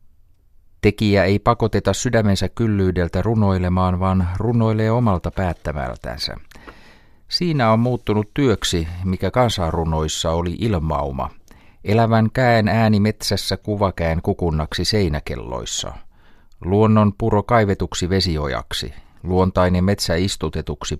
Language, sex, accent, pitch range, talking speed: Finnish, male, native, 80-105 Hz, 90 wpm